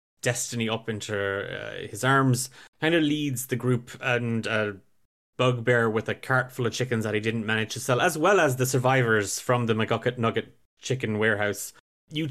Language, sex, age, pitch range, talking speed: English, male, 20-39, 115-145 Hz, 185 wpm